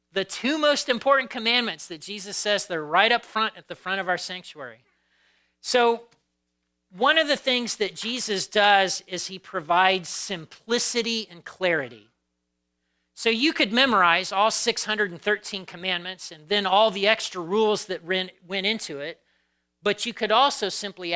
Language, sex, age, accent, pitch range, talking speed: English, male, 40-59, American, 140-210 Hz, 155 wpm